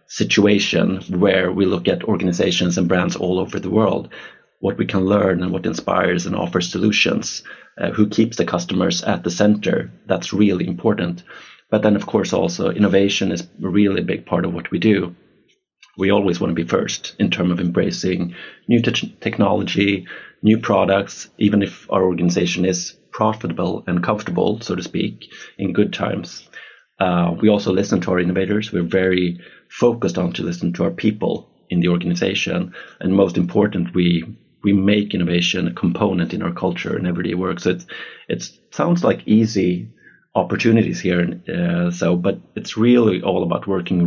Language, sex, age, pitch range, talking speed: English, male, 30-49, 90-105 Hz, 170 wpm